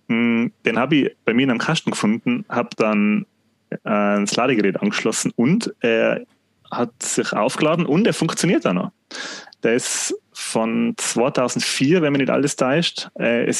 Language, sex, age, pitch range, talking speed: German, male, 30-49, 115-155 Hz, 155 wpm